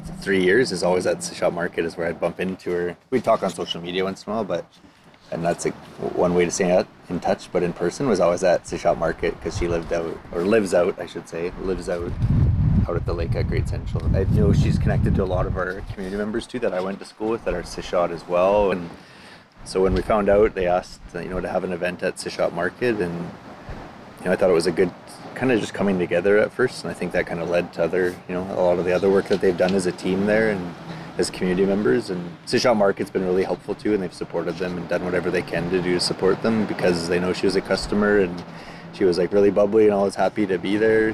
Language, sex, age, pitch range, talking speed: English, male, 20-39, 90-105 Hz, 270 wpm